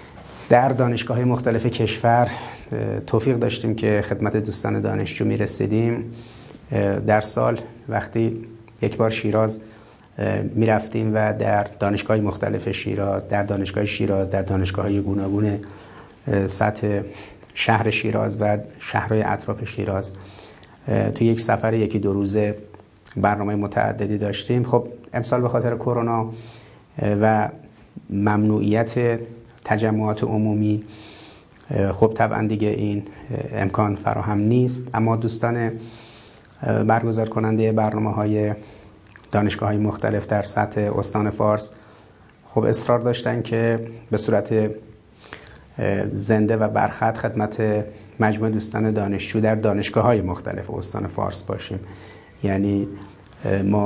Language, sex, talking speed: Persian, male, 110 wpm